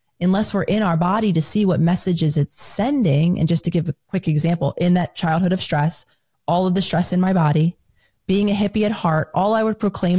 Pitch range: 160-200 Hz